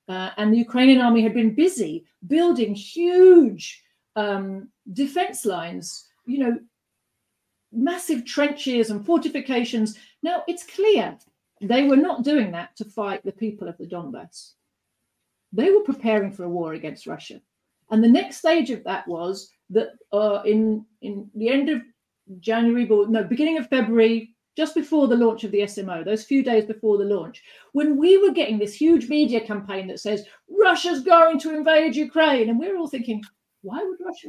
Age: 40-59